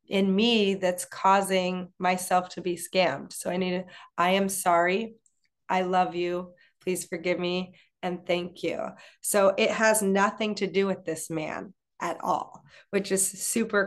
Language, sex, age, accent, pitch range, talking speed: English, female, 20-39, American, 175-200 Hz, 165 wpm